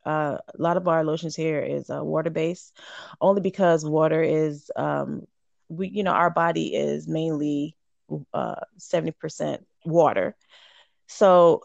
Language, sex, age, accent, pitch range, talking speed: English, female, 20-39, American, 155-180 Hz, 140 wpm